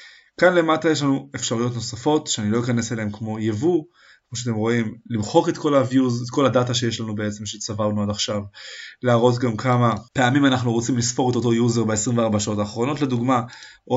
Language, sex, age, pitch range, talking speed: Hebrew, male, 20-39, 115-135 Hz, 185 wpm